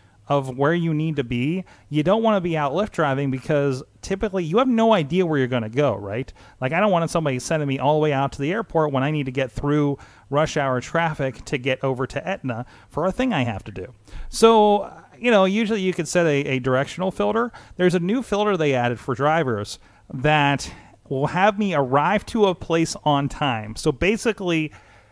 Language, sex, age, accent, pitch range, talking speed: English, male, 30-49, American, 125-165 Hz, 215 wpm